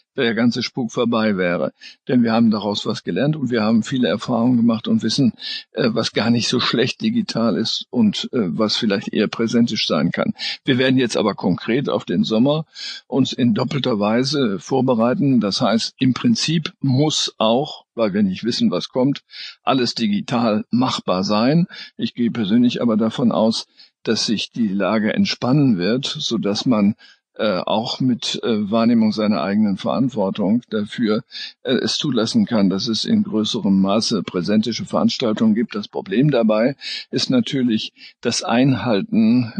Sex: male